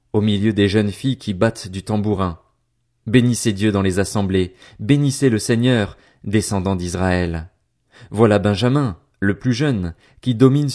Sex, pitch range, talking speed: male, 100-125 Hz, 145 wpm